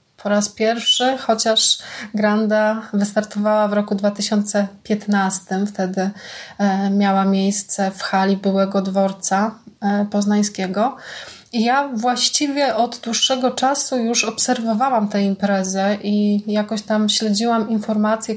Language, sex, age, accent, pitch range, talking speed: Polish, female, 20-39, native, 200-225 Hz, 100 wpm